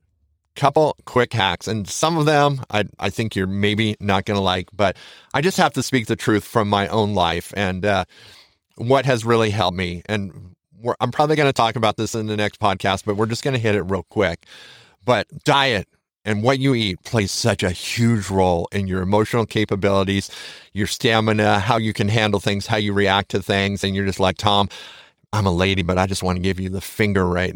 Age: 40-59